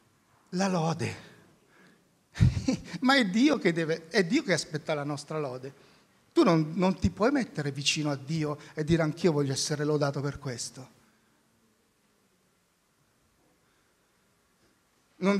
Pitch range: 165-225 Hz